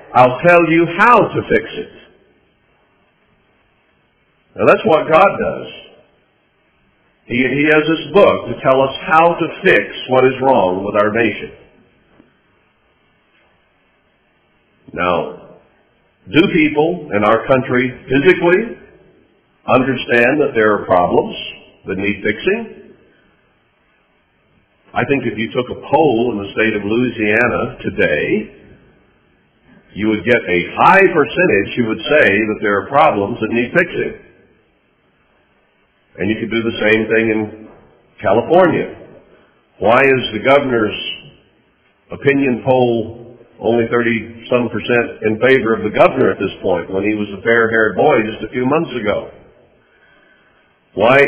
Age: 50-69